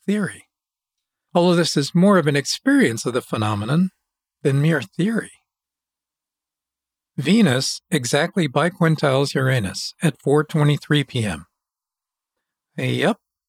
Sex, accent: male, American